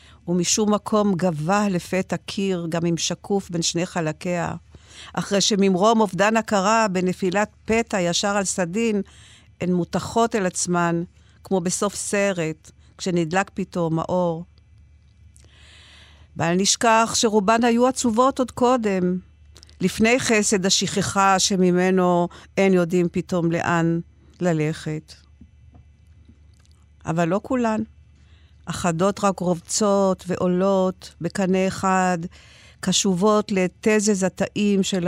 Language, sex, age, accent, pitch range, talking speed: Hebrew, female, 50-69, native, 170-205 Hz, 100 wpm